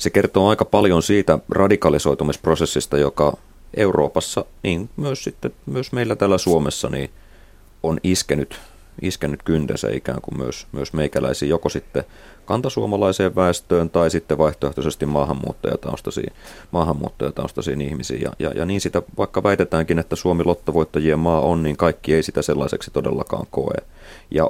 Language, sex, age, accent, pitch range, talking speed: Finnish, male, 30-49, native, 75-90 Hz, 130 wpm